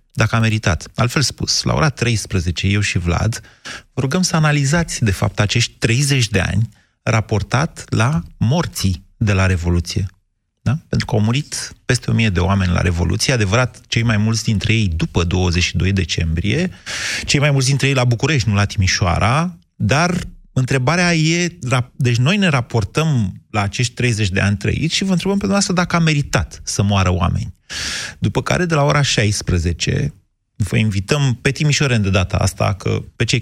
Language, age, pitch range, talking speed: Romanian, 30-49, 100-130 Hz, 170 wpm